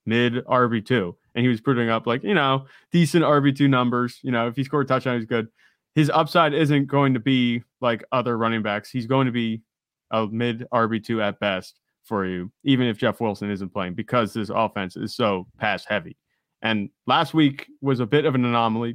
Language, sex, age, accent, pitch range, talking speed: English, male, 20-39, American, 110-135 Hz, 215 wpm